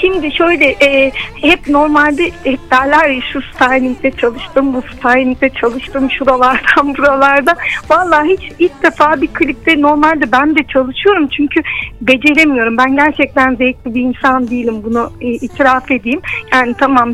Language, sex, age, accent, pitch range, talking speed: Turkish, female, 50-69, native, 265-335 Hz, 140 wpm